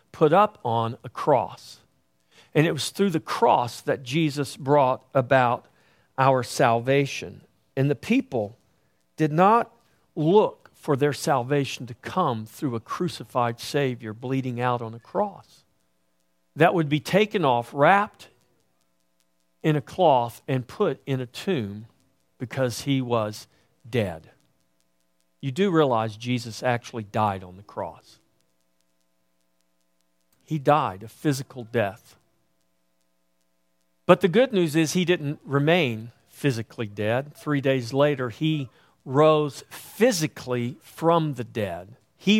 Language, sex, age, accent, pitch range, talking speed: English, male, 50-69, American, 110-160 Hz, 125 wpm